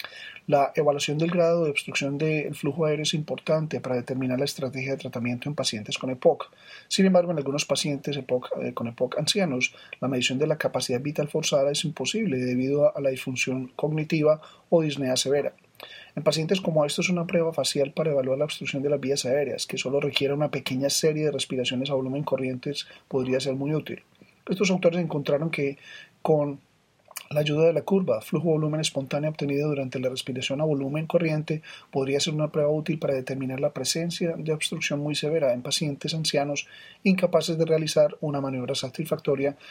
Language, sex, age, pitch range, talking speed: Spanish, male, 40-59, 130-155 Hz, 185 wpm